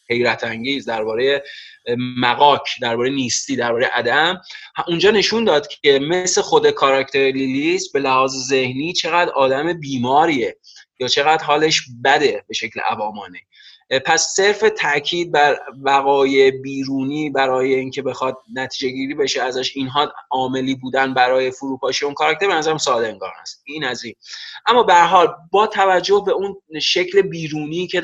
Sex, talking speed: male, 150 wpm